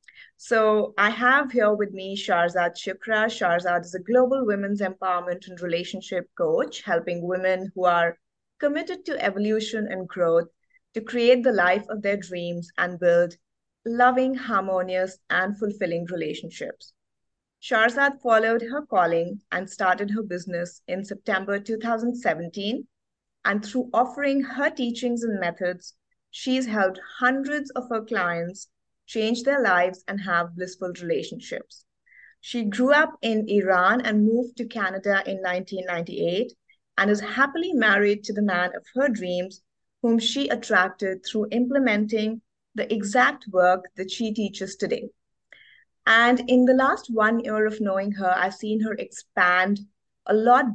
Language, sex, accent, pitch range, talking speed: English, female, Indian, 185-235 Hz, 140 wpm